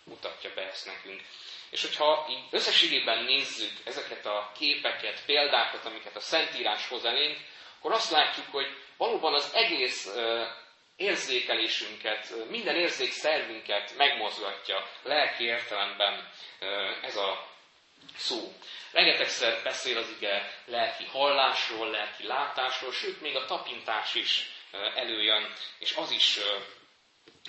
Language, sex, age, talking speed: Hungarian, male, 30-49, 120 wpm